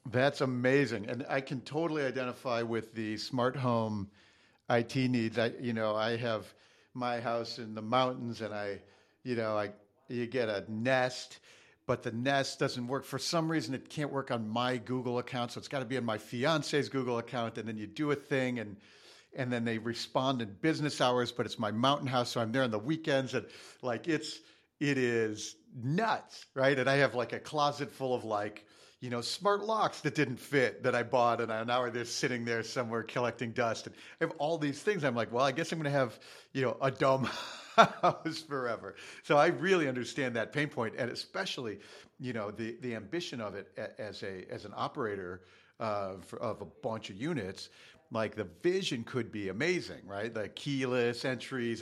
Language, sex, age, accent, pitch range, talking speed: English, male, 50-69, American, 115-135 Hz, 205 wpm